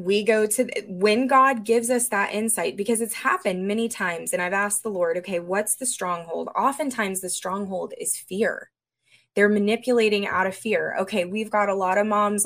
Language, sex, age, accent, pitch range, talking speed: English, female, 20-39, American, 190-250 Hz, 195 wpm